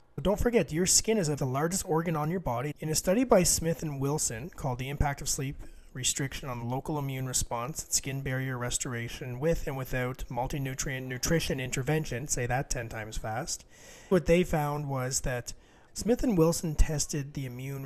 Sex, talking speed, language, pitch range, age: male, 185 wpm, English, 125-160 Hz, 30-49